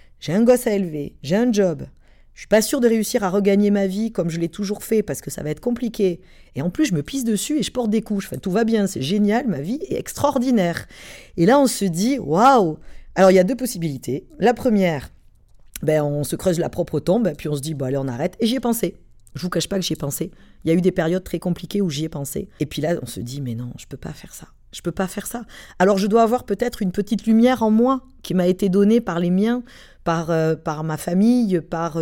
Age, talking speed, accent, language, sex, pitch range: 40-59, 270 wpm, French, French, female, 165-210 Hz